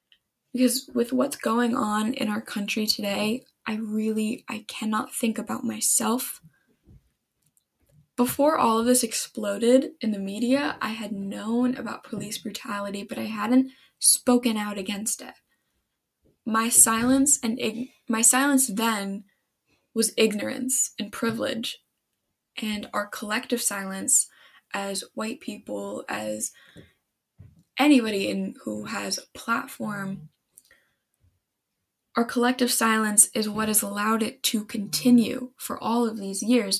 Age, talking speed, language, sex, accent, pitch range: 10-29, 125 wpm, English, female, American, 210-255 Hz